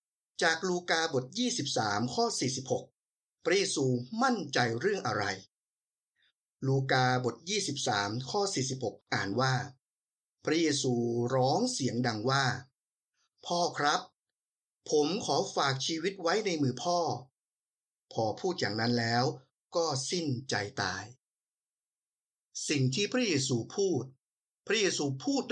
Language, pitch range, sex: Thai, 125-170 Hz, male